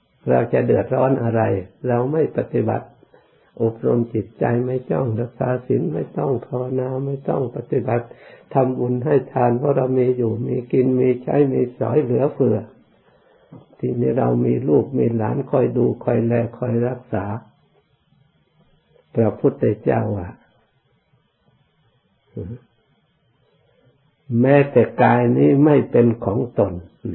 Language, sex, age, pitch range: Thai, male, 60-79, 110-130 Hz